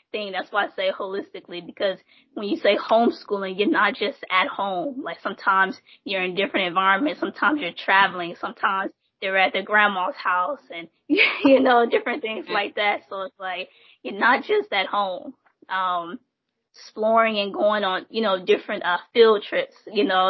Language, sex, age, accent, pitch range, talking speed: English, female, 20-39, American, 180-220 Hz, 175 wpm